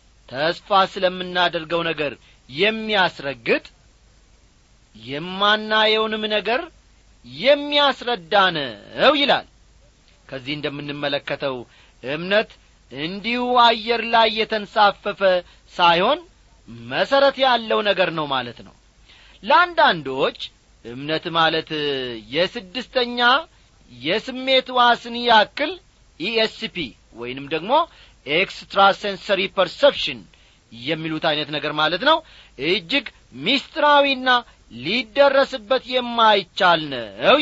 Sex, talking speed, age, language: male, 70 wpm, 40-59, Amharic